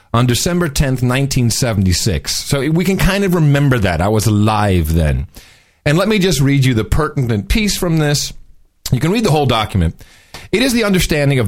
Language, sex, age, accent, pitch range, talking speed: English, male, 40-59, American, 115-160 Hz, 195 wpm